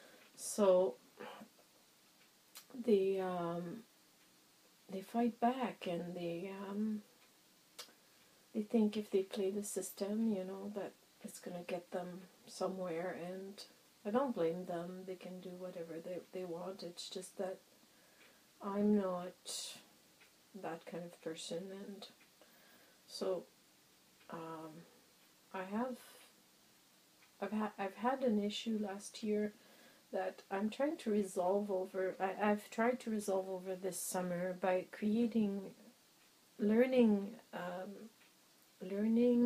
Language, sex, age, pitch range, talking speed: English, female, 40-59, 185-220 Hz, 115 wpm